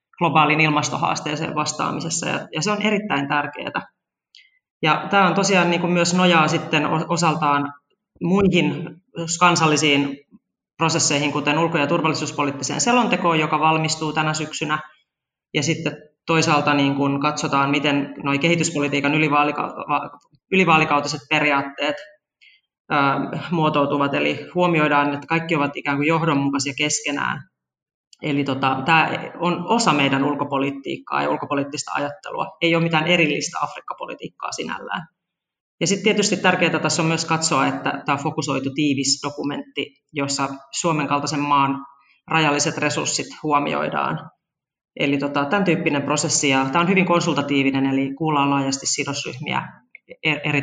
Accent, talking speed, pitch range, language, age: native, 110 wpm, 140-165 Hz, Finnish, 30-49